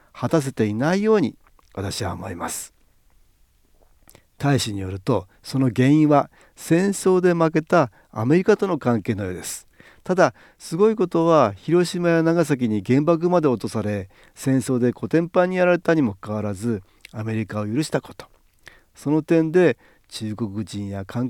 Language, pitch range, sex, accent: Japanese, 105-155 Hz, male, native